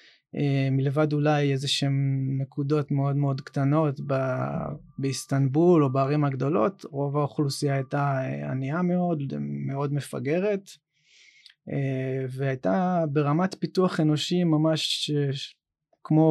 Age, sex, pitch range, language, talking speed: 20-39, male, 135-165 Hz, Hebrew, 90 wpm